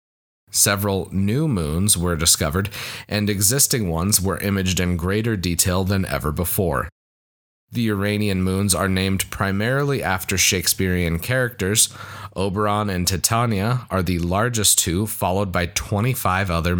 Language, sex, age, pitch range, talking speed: English, male, 30-49, 90-105 Hz, 130 wpm